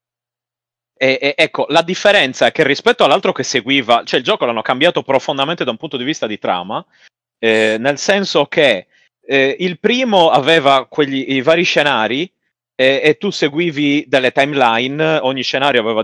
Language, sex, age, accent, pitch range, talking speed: Italian, male, 30-49, native, 110-145 Hz, 170 wpm